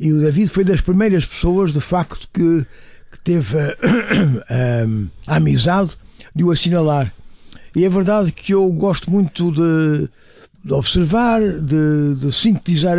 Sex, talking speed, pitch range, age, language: male, 150 wpm, 155-200 Hz, 60-79, Portuguese